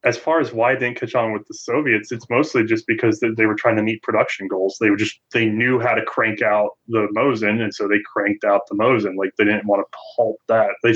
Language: English